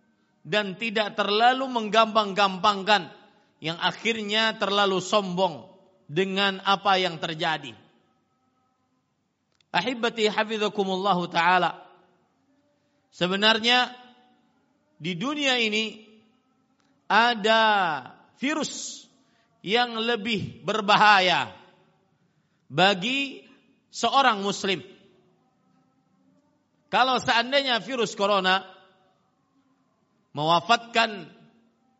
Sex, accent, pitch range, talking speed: male, native, 195-250 Hz, 60 wpm